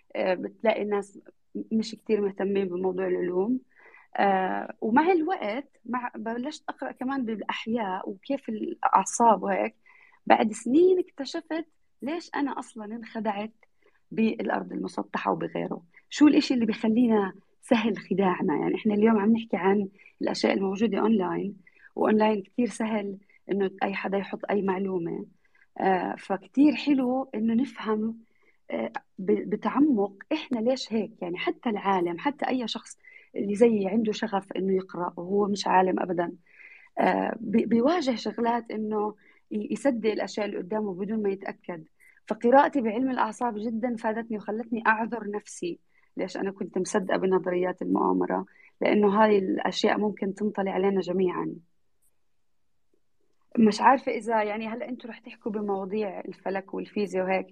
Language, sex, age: Arabic, female, 30-49